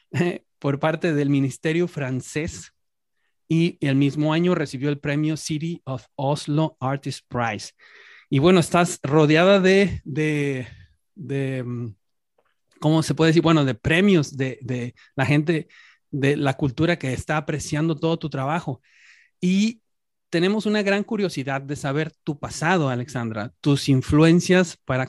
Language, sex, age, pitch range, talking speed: Spanish, male, 30-49, 135-165 Hz, 135 wpm